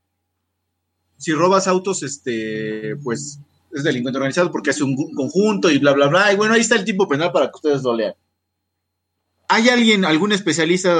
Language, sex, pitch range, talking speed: Italian, male, 115-185 Hz, 175 wpm